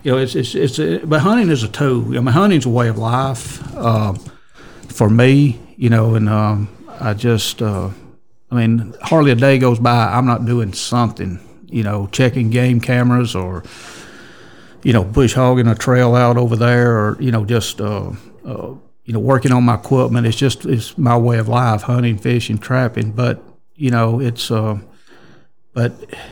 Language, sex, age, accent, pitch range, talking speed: English, male, 60-79, American, 115-125 Hz, 185 wpm